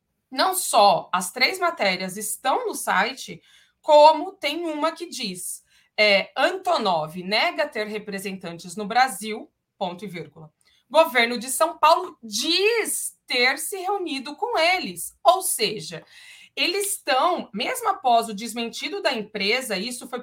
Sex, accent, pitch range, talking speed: female, Brazilian, 220-330 Hz, 130 wpm